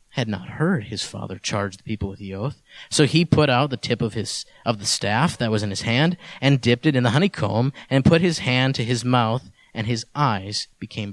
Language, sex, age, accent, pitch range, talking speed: English, male, 30-49, American, 115-160 Hz, 230 wpm